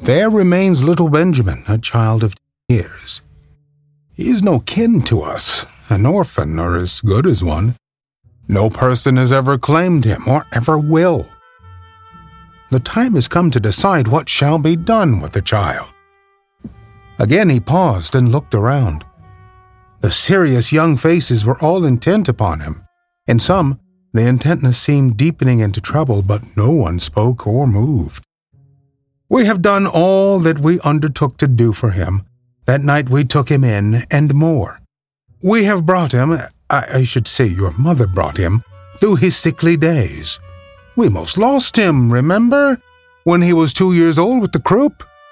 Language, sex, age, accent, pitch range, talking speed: English, male, 50-69, American, 110-165 Hz, 160 wpm